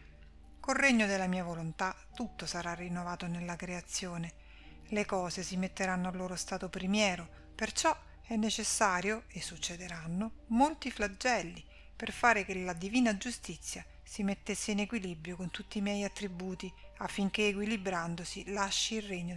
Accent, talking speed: native, 140 wpm